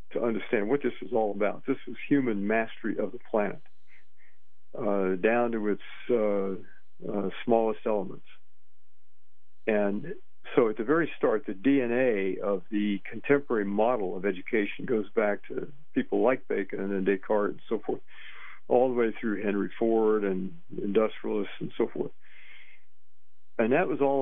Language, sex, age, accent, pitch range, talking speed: English, male, 50-69, American, 100-120 Hz, 155 wpm